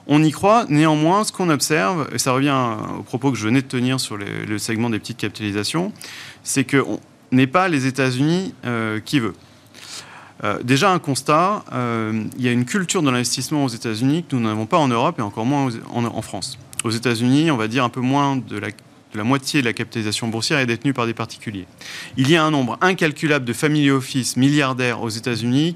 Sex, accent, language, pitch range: male, French, French, 115-145 Hz